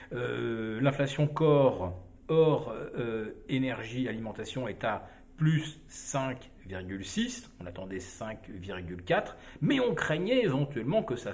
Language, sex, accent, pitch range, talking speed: French, male, French, 125-170 Hz, 105 wpm